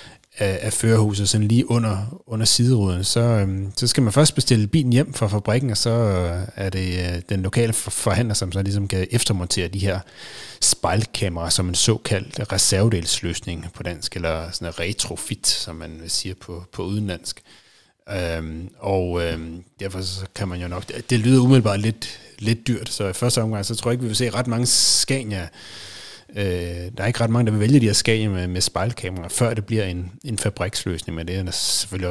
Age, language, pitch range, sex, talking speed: 30-49, Danish, 90-115 Hz, male, 185 wpm